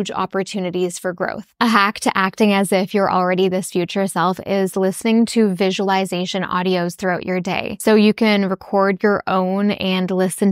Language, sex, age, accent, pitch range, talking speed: English, female, 10-29, American, 185-210 Hz, 170 wpm